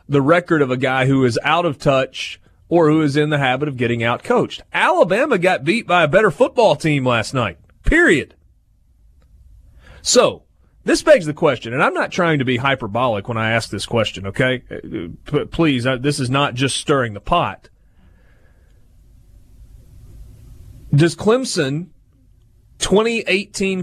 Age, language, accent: 30-49, English, American